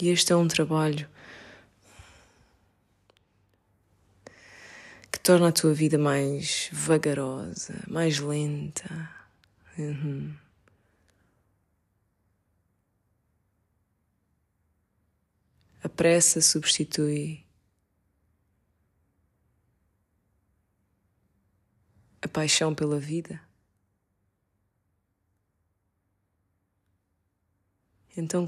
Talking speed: 45 wpm